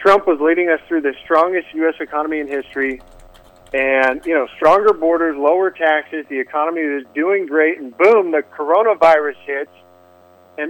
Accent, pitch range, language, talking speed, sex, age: American, 130-185 Hz, English, 165 wpm, male, 50-69